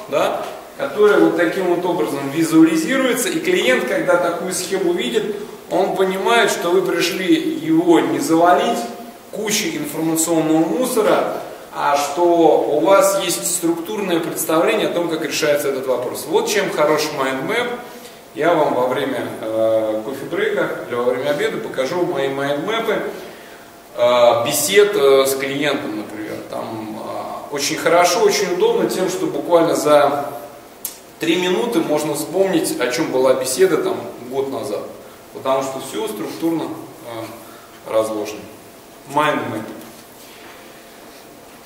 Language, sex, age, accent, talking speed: Russian, male, 20-39, native, 120 wpm